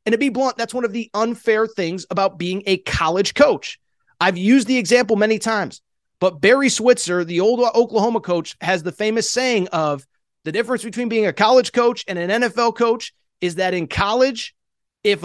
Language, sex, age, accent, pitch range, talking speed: English, male, 30-49, American, 190-245 Hz, 195 wpm